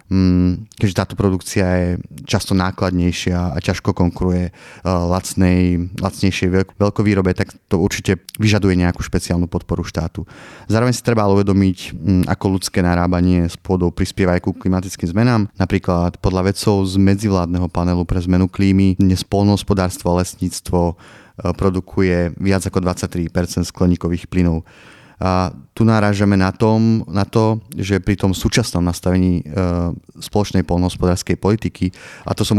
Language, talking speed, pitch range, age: Slovak, 130 wpm, 90-100 Hz, 30-49